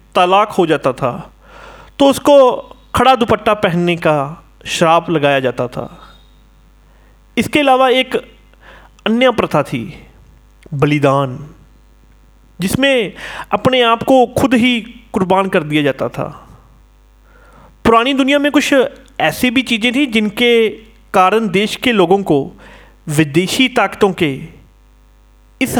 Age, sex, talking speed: 40-59, male, 115 wpm